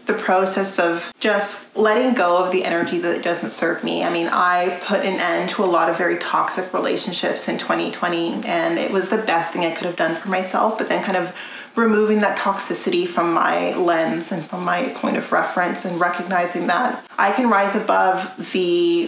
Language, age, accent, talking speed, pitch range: English, 30-49, American, 200 wpm, 180-205 Hz